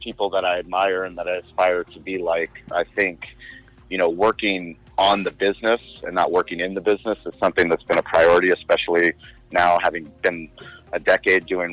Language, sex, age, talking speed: English, male, 30-49, 195 wpm